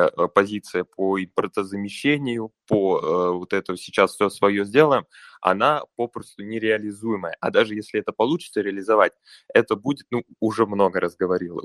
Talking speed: 140 wpm